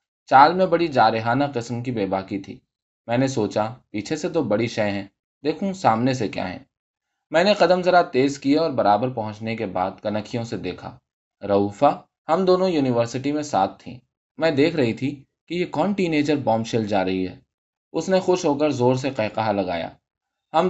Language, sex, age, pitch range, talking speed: Urdu, male, 20-39, 105-155 Hz, 190 wpm